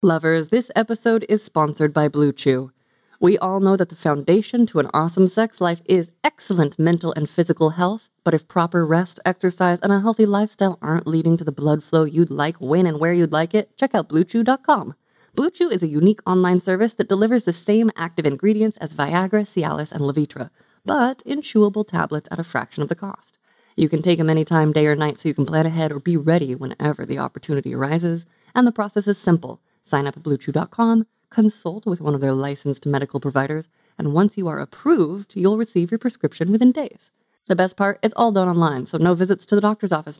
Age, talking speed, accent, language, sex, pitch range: 20-39, 210 wpm, American, English, female, 155-210 Hz